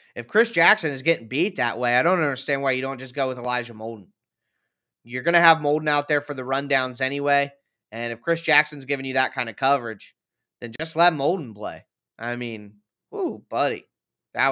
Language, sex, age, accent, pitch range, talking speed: English, male, 20-39, American, 130-160 Hz, 205 wpm